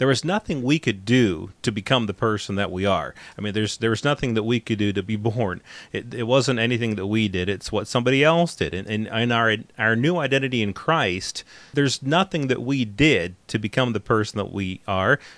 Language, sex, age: English, male, 30-49